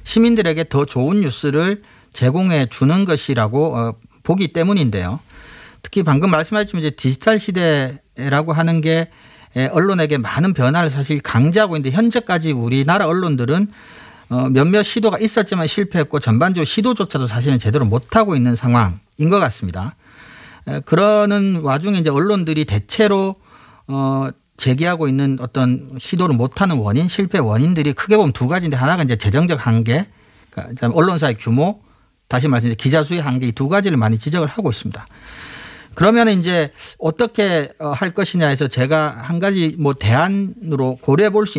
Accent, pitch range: native, 125-180 Hz